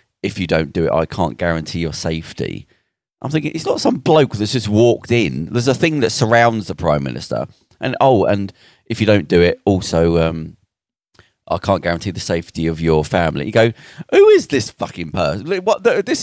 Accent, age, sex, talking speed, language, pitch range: British, 30-49, male, 205 wpm, English, 110-185 Hz